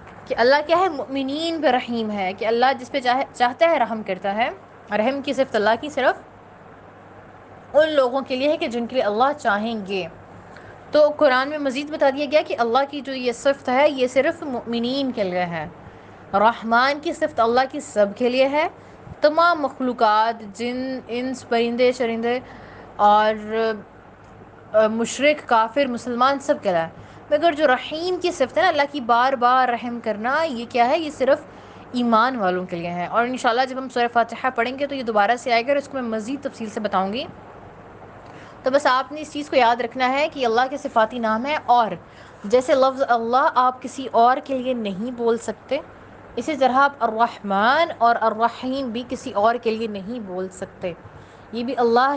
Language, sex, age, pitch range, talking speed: Urdu, female, 20-39, 220-275 Hz, 190 wpm